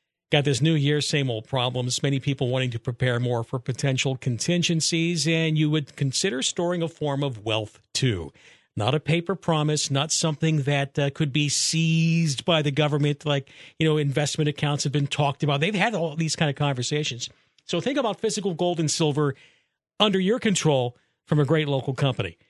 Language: English